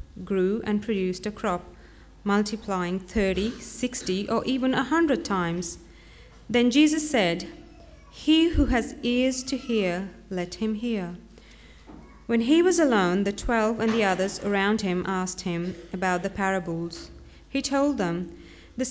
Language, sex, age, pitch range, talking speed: English, female, 30-49, 185-240 Hz, 145 wpm